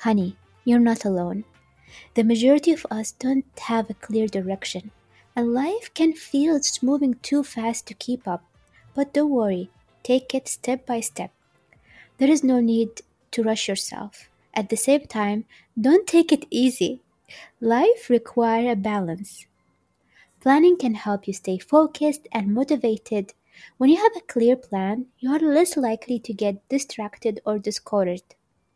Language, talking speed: English, 155 wpm